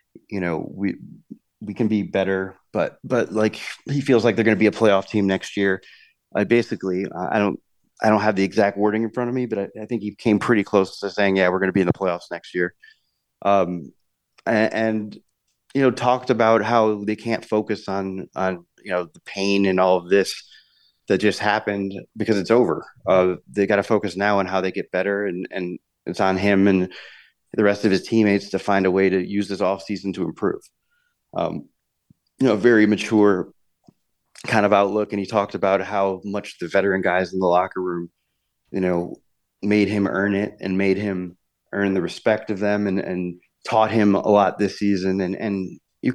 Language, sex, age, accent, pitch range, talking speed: English, male, 30-49, American, 95-110 Hz, 215 wpm